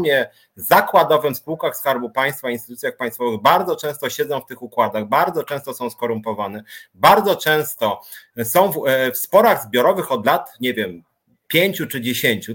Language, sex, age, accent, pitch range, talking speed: Polish, male, 30-49, native, 140-175 Hz, 150 wpm